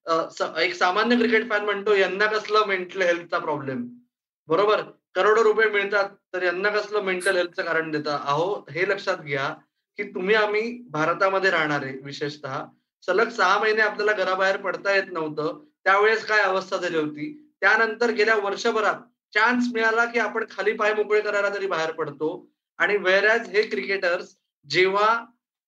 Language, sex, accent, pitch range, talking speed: Marathi, male, native, 180-225 Hz, 150 wpm